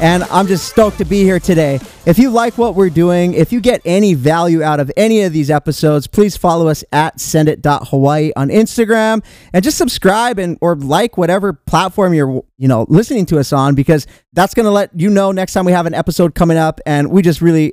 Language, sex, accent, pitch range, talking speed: English, male, American, 160-210 Hz, 225 wpm